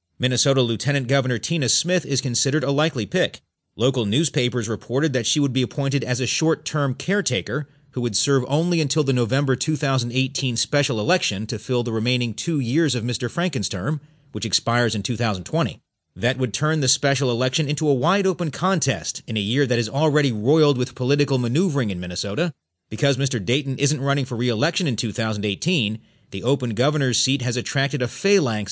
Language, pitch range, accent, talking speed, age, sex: English, 120-150 Hz, American, 180 wpm, 40-59, male